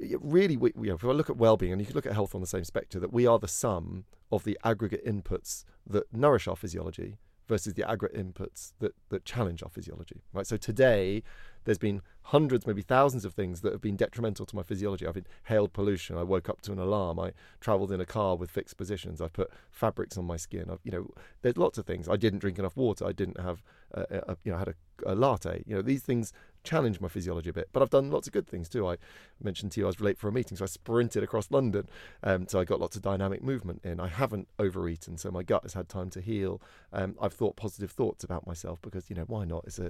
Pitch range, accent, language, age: 90-115 Hz, British, English, 40-59